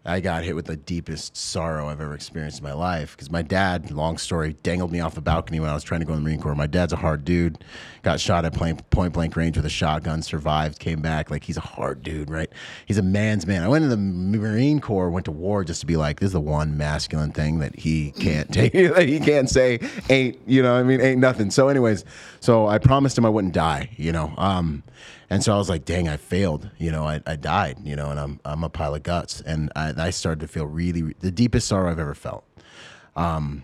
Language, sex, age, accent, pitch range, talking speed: English, male, 30-49, American, 80-100 Hz, 255 wpm